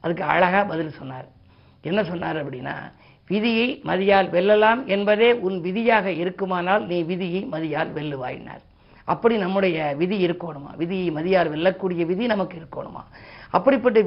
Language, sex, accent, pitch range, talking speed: Tamil, female, native, 170-215 Hz, 130 wpm